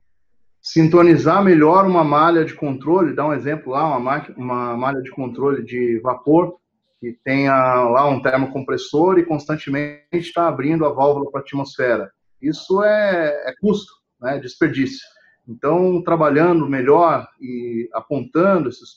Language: Portuguese